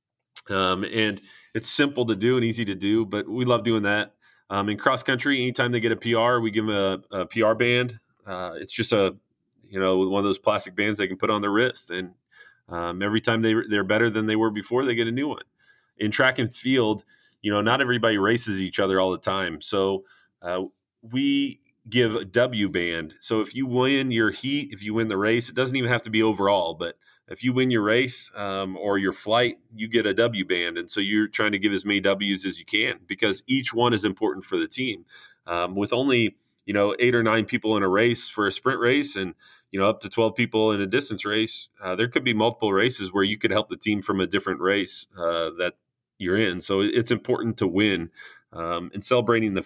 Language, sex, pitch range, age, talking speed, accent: English, male, 100-120 Hz, 30-49, 235 wpm, American